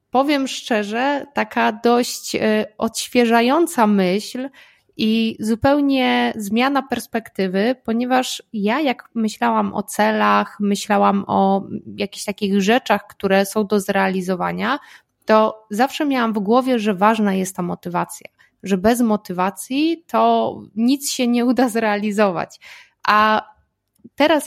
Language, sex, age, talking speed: Polish, female, 20-39, 115 wpm